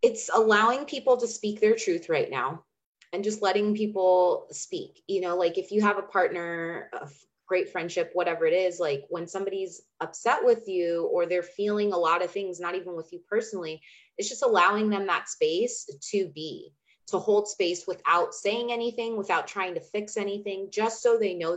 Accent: American